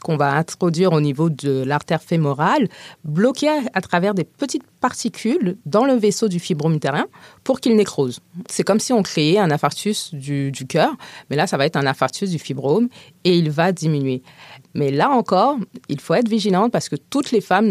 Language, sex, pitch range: French, female, 150-205 Hz